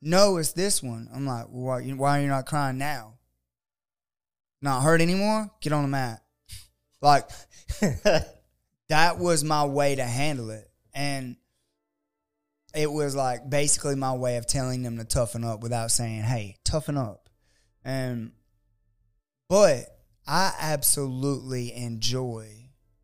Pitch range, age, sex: 115-140 Hz, 20-39, male